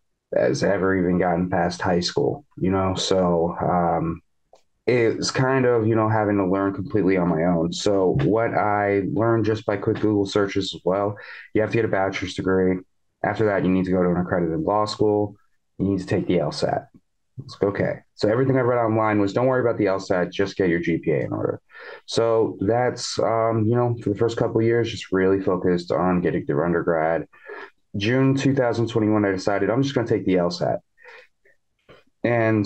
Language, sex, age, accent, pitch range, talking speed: English, male, 20-39, American, 95-115 Hz, 200 wpm